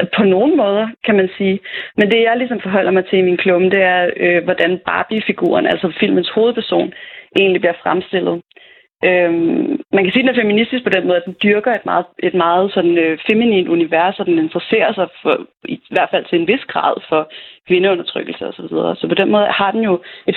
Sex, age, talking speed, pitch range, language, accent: female, 30-49, 210 wpm, 185-225 Hz, Danish, native